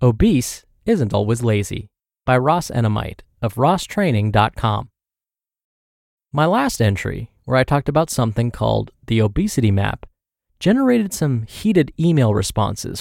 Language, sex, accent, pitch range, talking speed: English, male, American, 105-160 Hz, 120 wpm